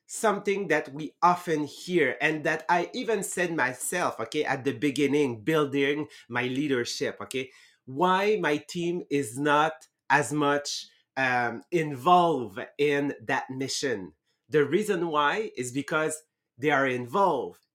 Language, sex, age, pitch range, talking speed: English, male, 30-49, 140-175 Hz, 130 wpm